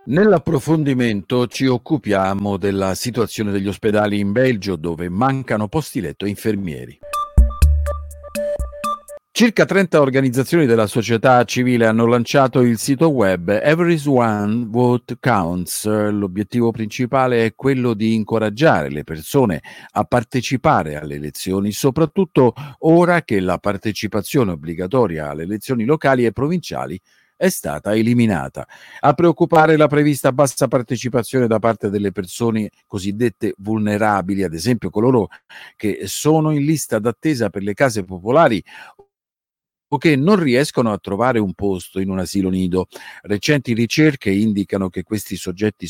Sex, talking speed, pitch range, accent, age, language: male, 125 wpm, 100-145 Hz, native, 50-69, Italian